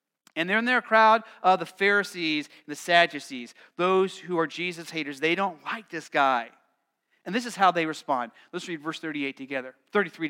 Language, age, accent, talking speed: English, 40-59, American, 190 wpm